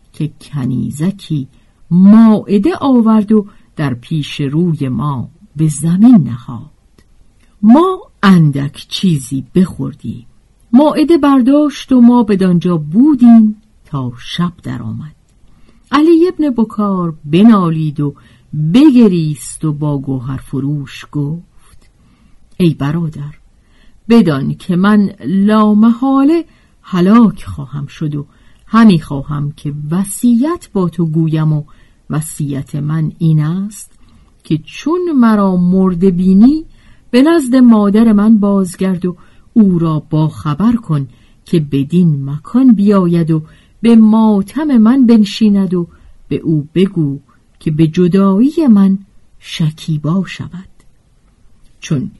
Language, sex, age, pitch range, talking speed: Persian, female, 50-69, 150-220 Hz, 105 wpm